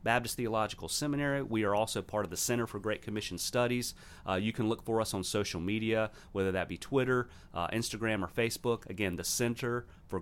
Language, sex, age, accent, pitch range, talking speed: English, male, 40-59, American, 95-120 Hz, 205 wpm